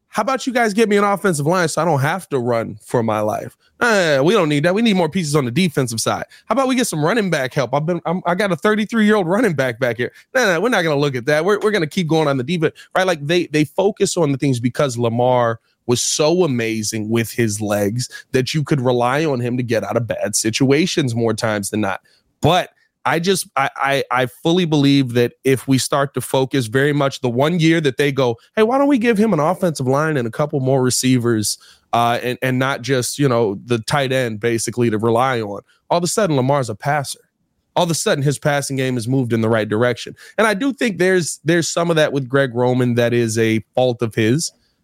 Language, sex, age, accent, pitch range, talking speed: English, male, 20-39, American, 120-175 Hz, 250 wpm